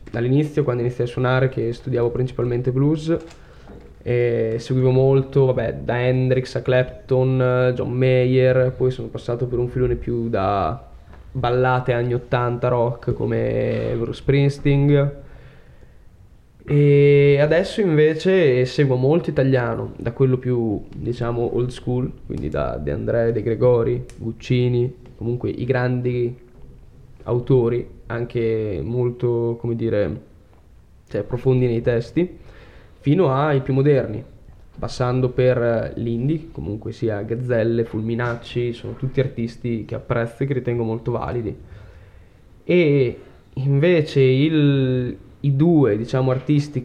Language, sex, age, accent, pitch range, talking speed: Italian, male, 10-29, native, 120-135 Hz, 120 wpm